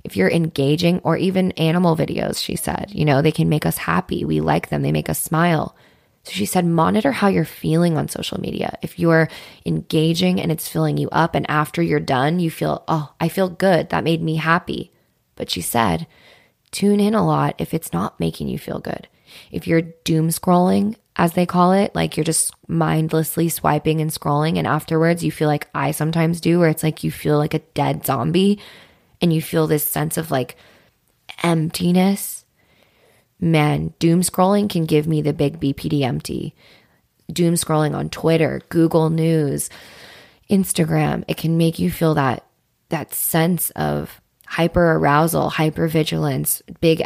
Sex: female